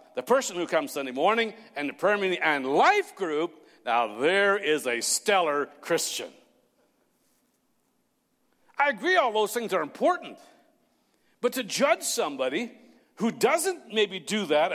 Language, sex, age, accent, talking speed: English, male, 60-79, American, 140 wpm